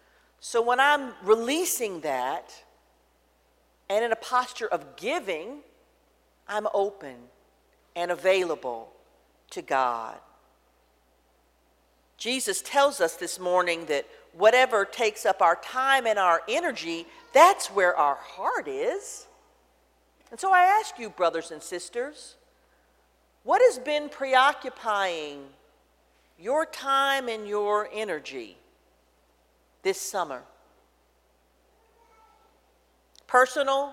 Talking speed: 100 wpm